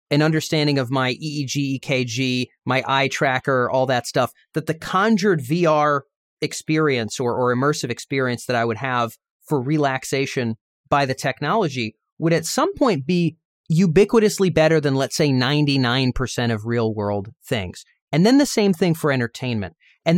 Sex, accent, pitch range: male, American, 130-190 Hz